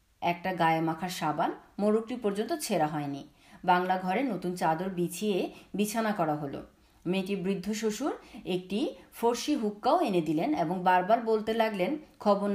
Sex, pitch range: female, 170-235 Hz